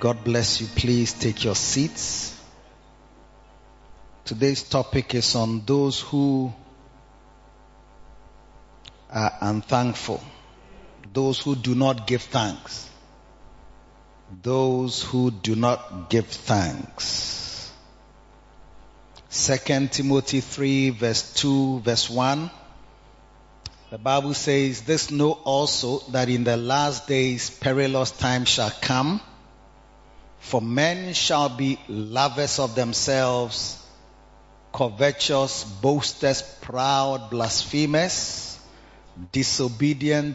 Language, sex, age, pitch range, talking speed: English, male, 30-49, 115-140 Hz, 90 wpm